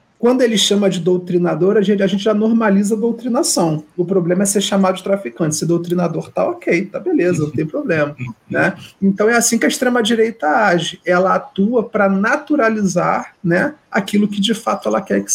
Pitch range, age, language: 175-205 Hz, 40-59, Portuguese